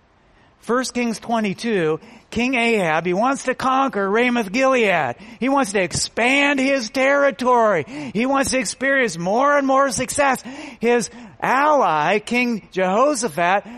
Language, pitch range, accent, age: English, 190-245 Hz, American, 40-59